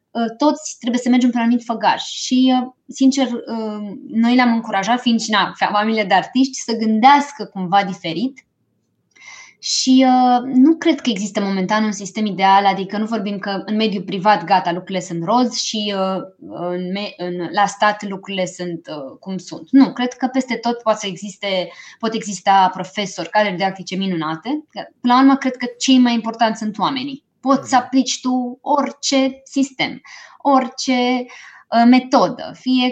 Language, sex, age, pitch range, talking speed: Romanian, female, 20-39, 195-255 Hz, 150 wpm